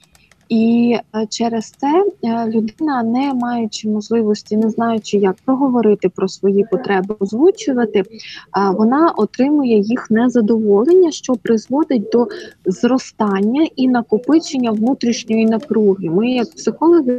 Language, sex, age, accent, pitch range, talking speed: Ukrainian, female, 20-39, native, 210-250 Hz, 105 wpm